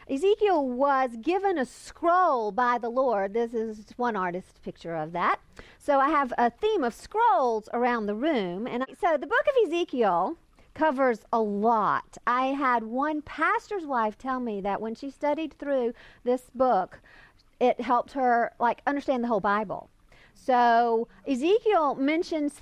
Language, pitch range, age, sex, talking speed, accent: English, 220-310 Hz, 50-69, female, 155 wpm, American